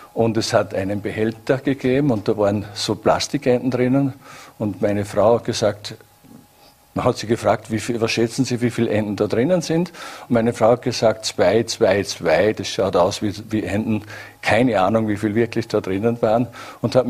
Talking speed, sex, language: 195 wpm, male, German